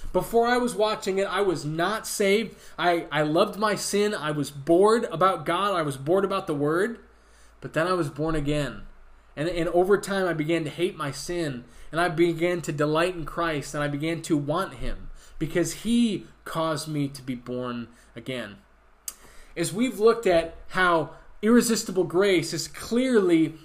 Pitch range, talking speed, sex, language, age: 165-220 Hz, 180 wpm, male, English, 20-39